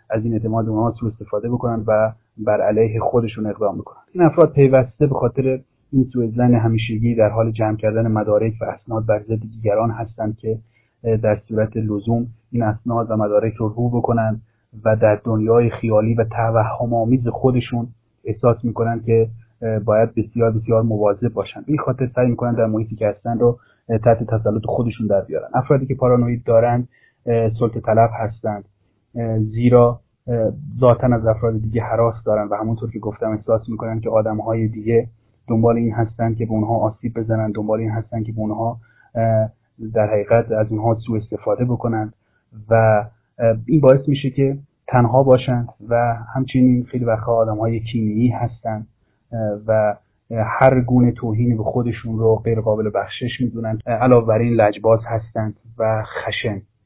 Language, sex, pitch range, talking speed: Persian, male, 110-120 Hz, 160 wpm